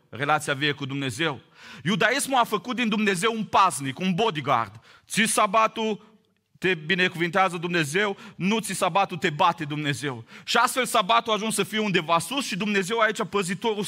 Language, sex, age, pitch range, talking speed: Romanian, male, 30-49, 165-210 Hz, 160 wpm